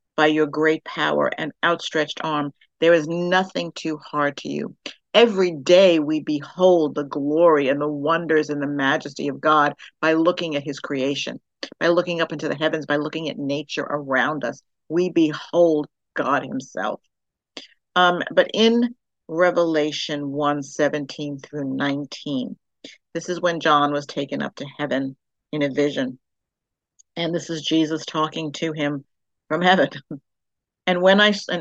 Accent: American